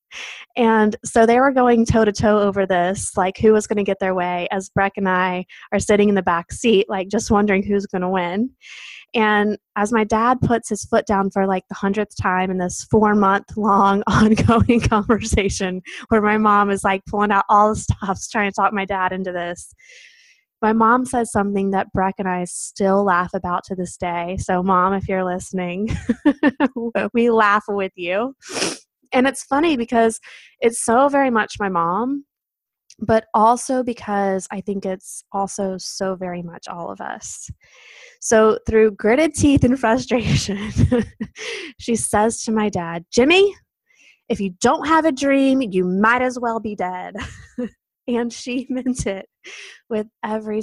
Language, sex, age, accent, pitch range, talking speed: English, female, 20-39, American, 195-235 Hz, 170 wpm